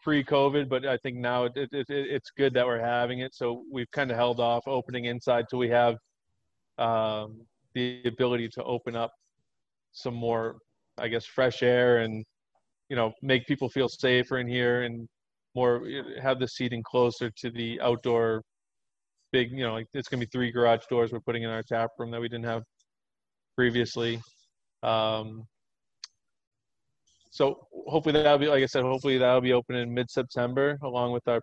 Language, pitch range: English, 115-125 Hz